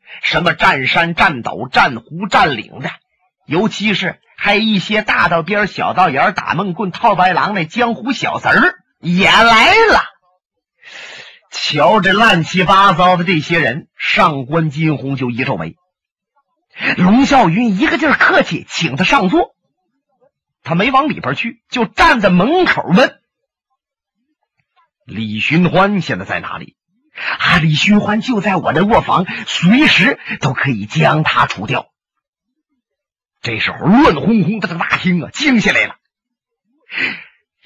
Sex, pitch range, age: male, 165-260 Hz, 40-59